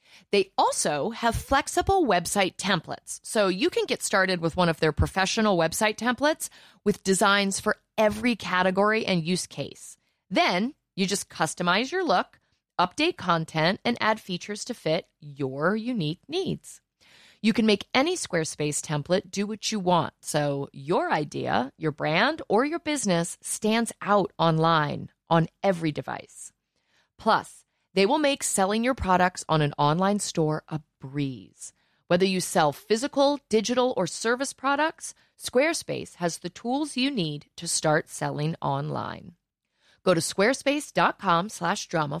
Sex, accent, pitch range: female, American, 155-230 Hz